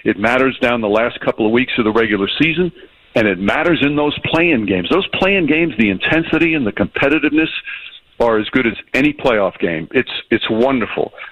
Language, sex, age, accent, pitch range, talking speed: English, male, 60-79, American, 110-140 Hz, 195 wpm